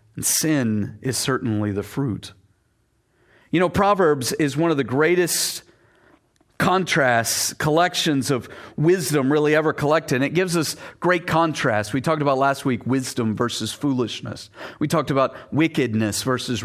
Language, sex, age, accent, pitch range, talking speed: English, male, 40-59, American, 110-165 Hz, 140 wpm